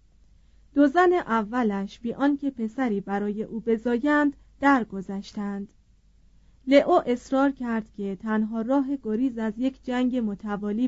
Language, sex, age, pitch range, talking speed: Persian, female, 40-59, 200-260 Hz, 120 wpm